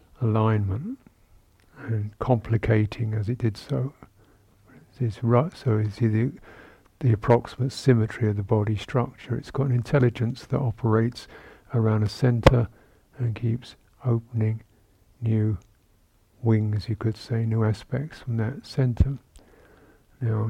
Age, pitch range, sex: 60-79, 105-120 Hz, male